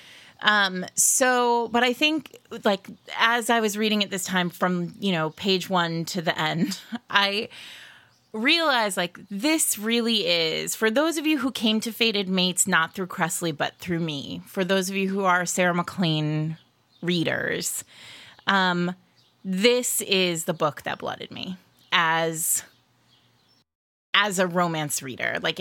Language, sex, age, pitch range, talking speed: English, female, 30-49, 175-215 Hz, 150 wpm